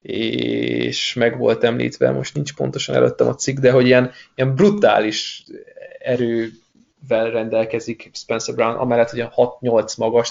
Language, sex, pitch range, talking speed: Hungarian, male, 125-145 Hz, 140 wpm